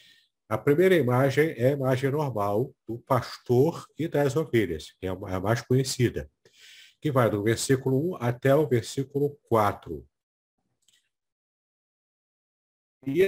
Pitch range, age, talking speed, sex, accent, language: 115-145 Hz, 60-79, 115 wpm, male, Brazilian, Portuguese